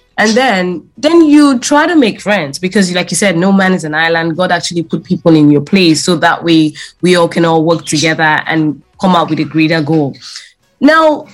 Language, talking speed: English, 220 wpm